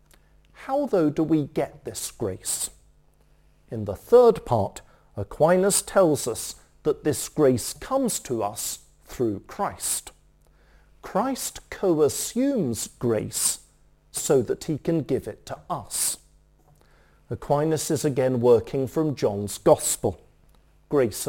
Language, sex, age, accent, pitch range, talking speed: English, male, 50-69, British, 120-185 Hz, 115 wpm